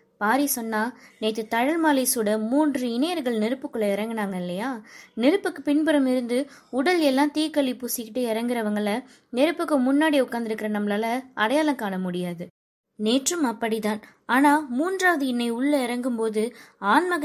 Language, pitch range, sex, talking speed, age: Tamil, 210-265 Hz, female, 125 wpm, 20-39